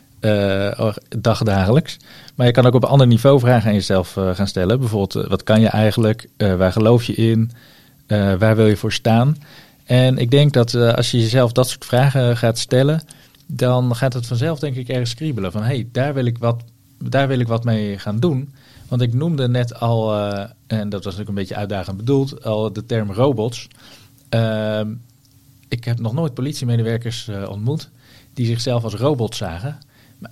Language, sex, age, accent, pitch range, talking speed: Dutch, male, 40-59, Dutch, 110-130 Hz, 190 wpm